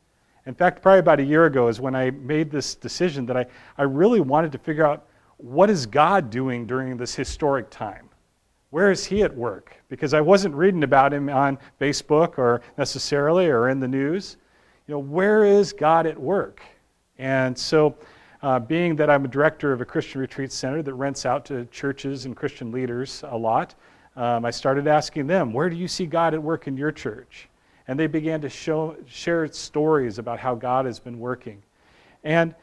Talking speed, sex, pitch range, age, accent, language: 195 wpm, male, 130-165 Hz, 40-59, American, English